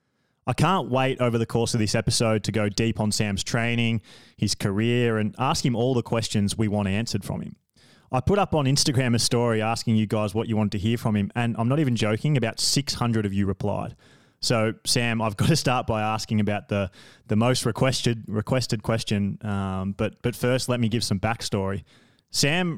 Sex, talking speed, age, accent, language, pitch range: male, 210 wpm, 20-39, Australian, English, 105-125 Hz